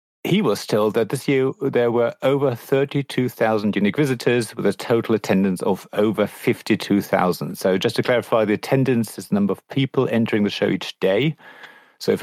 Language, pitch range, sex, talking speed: English, 100-130 Hz, male, 180 wpm